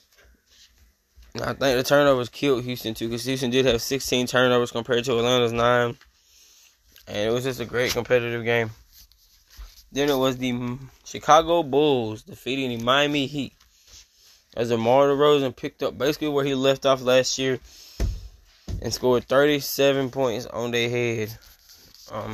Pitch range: 90-135 Hz